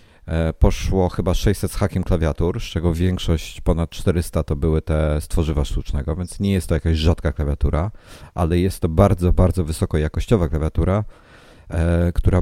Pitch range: 80-100 Hz